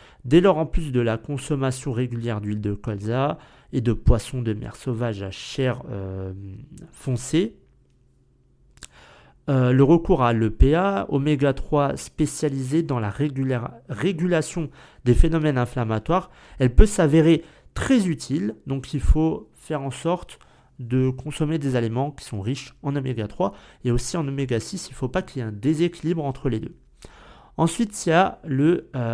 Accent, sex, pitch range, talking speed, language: French, male, 115-155 Hz, 155 wpm, French